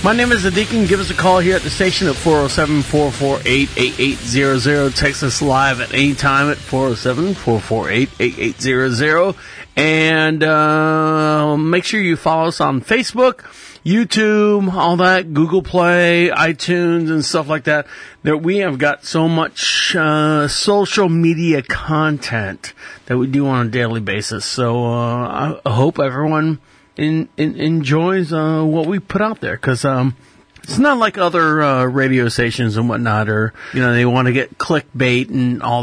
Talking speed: 155 wpm